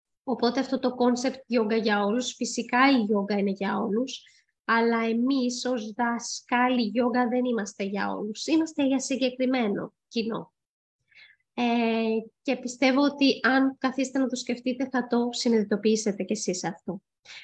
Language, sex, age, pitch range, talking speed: Greek, female, 20-39, 220-270 Hz, 140 wpm